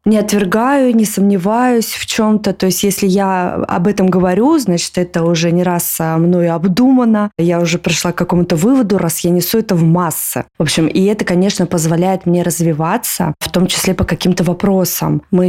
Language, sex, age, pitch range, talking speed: Russian, female, 20-39, 170-195 Hz, 190 wpm